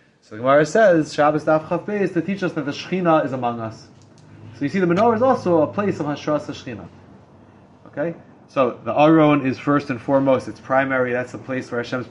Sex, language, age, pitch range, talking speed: male, English, 20-39, 125-150 Hz, 210 wpm